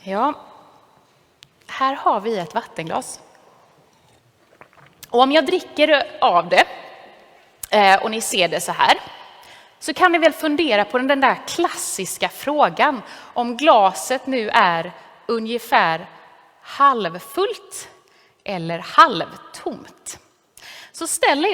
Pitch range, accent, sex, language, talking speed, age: 200-290 Hz, native, female, Swedish, 105 wpm, 30-49